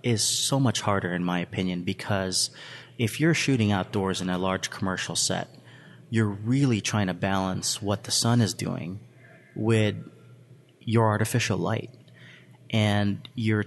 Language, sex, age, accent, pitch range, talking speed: English, male, 30-49, American, 95-120 Hz, 145 wpm